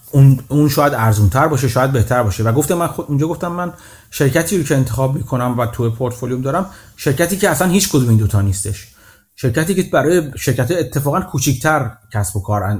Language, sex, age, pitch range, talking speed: Persian, male, 30-49, 115-170 Hz, 185 wpm